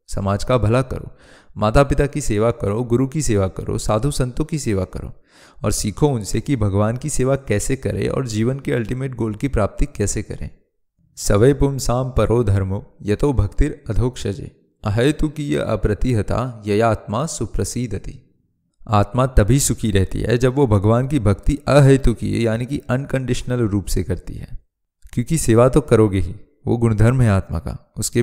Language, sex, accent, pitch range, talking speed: Hindi, male, native, 105-130 Hz, 170 wpm